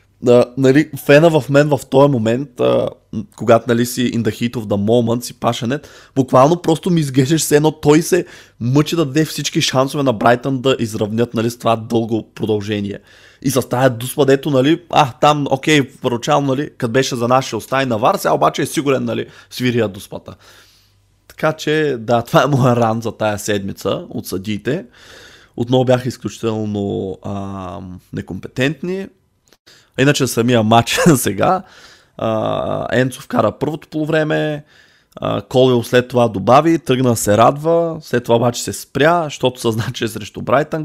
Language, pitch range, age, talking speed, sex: Bulgarian, 110-140 Hz, 20-39, 160 wpm, male